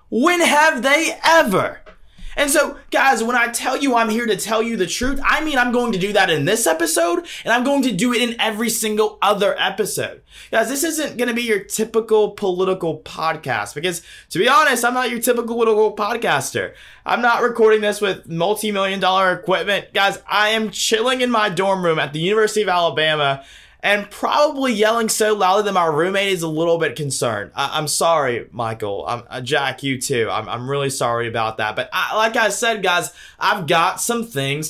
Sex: male